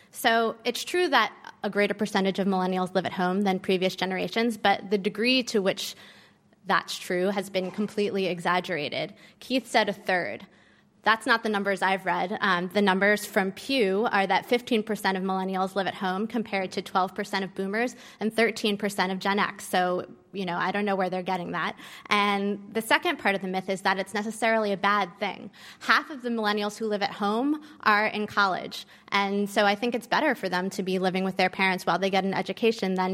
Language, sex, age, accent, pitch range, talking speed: English, female, 20-39, American, 195-225 Hz, 205 wpm